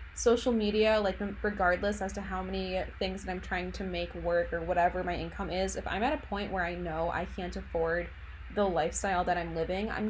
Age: 20-39